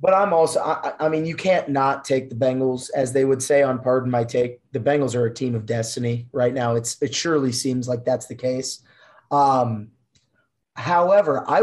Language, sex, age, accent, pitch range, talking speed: English, male, 20-39, American, 125-145 Hz, 210 wpm